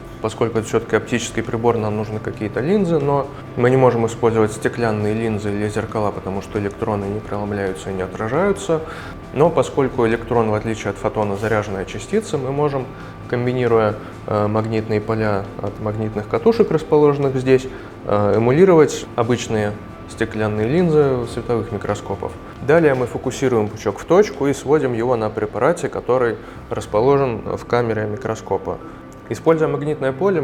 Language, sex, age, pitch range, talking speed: Russian, male, 20-39, 105-130 Hz, 140 wpm